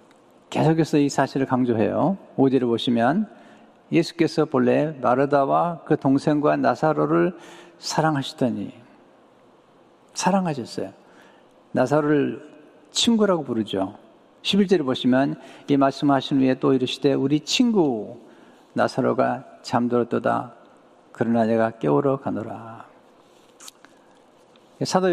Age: 50-69